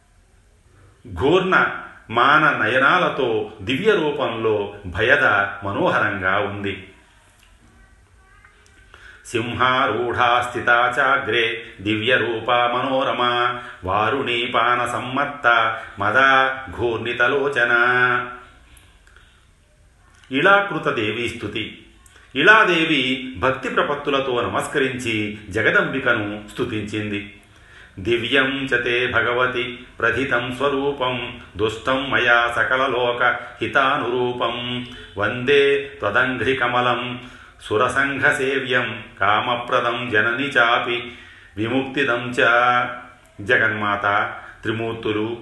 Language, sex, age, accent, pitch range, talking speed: Telugu, male, 40-59, native, 105-125 Hz, 40 wpm